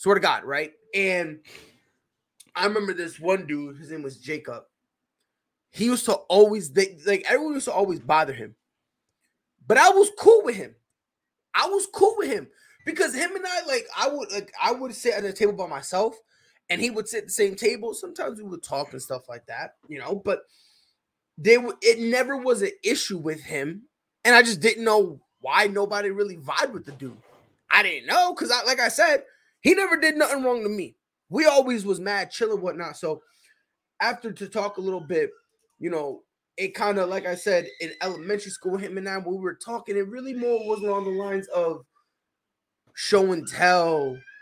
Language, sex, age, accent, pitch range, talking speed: English, male, 20-39, American, 170-260 Hz, 205 wpm